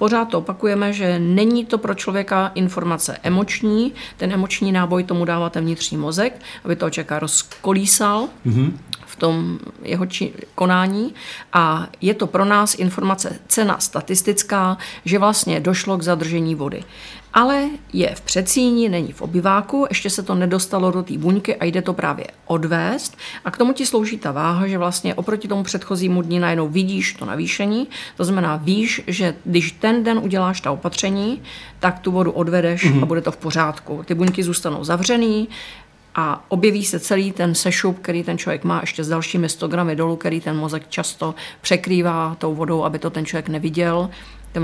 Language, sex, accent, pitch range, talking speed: Czech, female, native, 165-210 Hz, 170 wpm